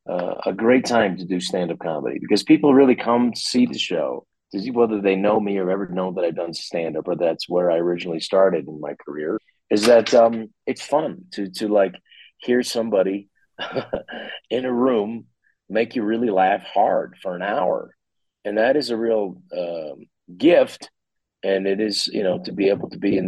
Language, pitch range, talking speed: English, 90-115 Hz, 195 wpm